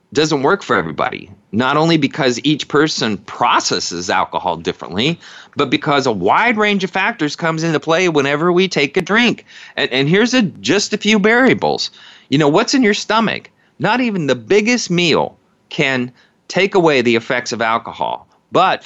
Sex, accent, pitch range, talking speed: male, American, 125-180 Hz, 170 wpm